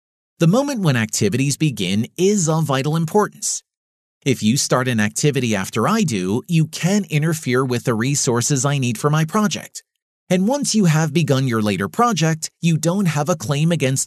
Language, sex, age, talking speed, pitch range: English, male, 30-49, 180 wpm, 125-180 Hz